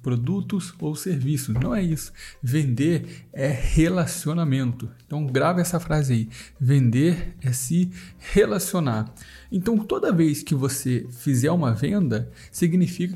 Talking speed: 125 wpm